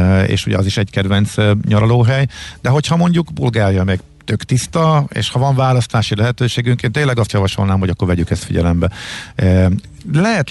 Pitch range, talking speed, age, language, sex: 95-125 Hz, 175 wpm, 50-69, Hungarian, male